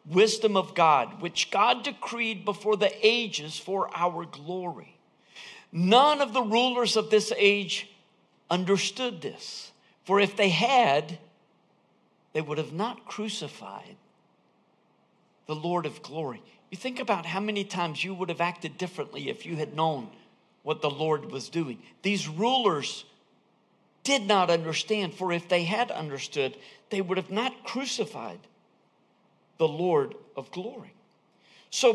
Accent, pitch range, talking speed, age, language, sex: American, 170-235 Hz, 140 wpm, 50-69, English, male